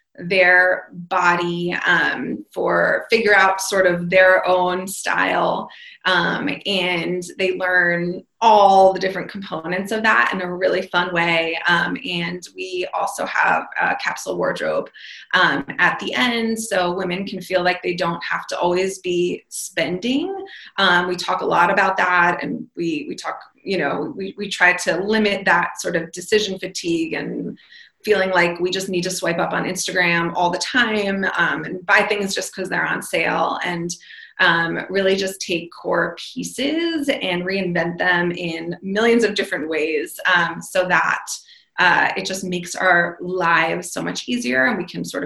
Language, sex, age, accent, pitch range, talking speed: English, female, 20-39, American, 175-220 Hz, 170 wpm